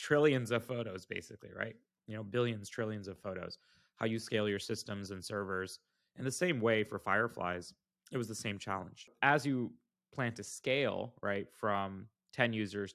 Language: English